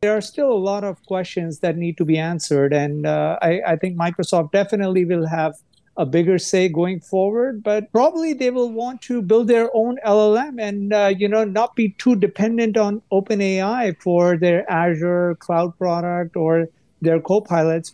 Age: 50-69